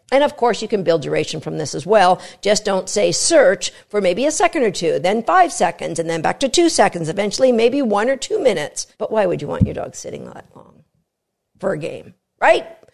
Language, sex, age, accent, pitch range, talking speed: English, female, 50-69, American, 200-280 Hz, 230 wpm